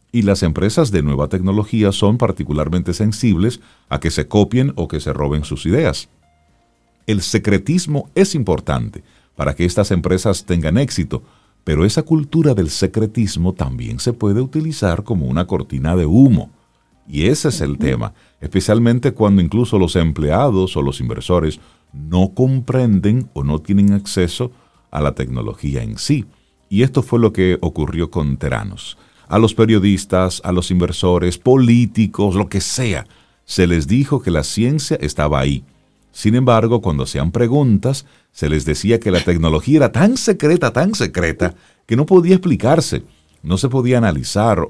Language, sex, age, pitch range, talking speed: Spanish, male, 50-69, 80-120 Hz, 155 wpm